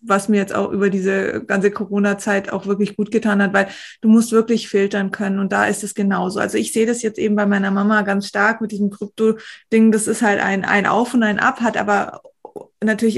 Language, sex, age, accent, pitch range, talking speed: German, female, 20-39, German, 200-225 Hz, 230 wpm